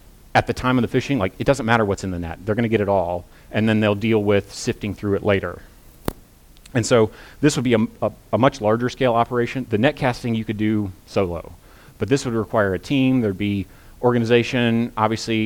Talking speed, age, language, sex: 225 wpm, 30-49, English, male